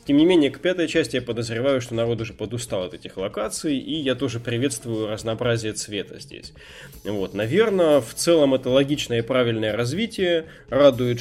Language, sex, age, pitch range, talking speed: Russian, male, 20-39, 115-145 Hz, 170 wpm